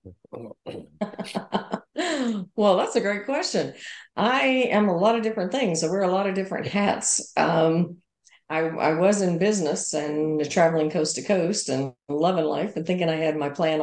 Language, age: English, 50-69